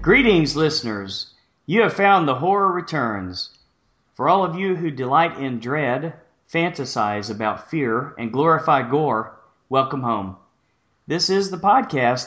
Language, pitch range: English, 125-160 Hz